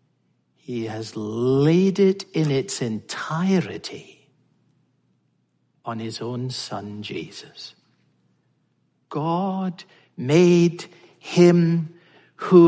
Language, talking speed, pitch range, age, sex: English, 75 wpm, 135-195 Hz, 60-79, male